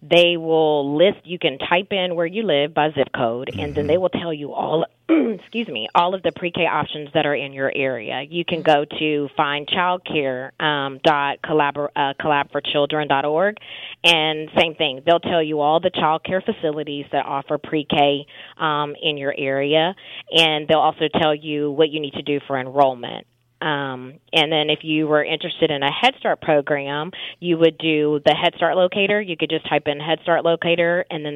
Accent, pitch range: American, 145-170 Hz